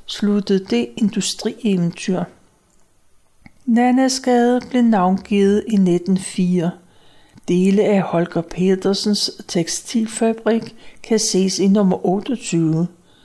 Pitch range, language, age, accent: 185-225 Hz, Danish, 60-79, native